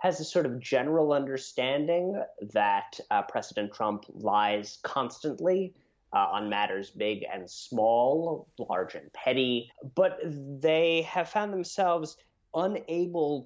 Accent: American